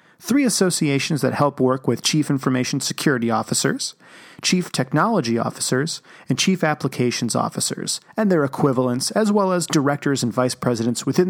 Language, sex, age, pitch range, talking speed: English, male, 40-59, 125-170 Hz, 150 wpm